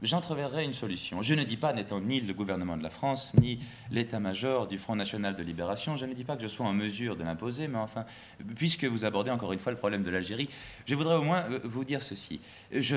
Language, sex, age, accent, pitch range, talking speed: French, male, 30-49, French, 105-145 Hz, 240 wpm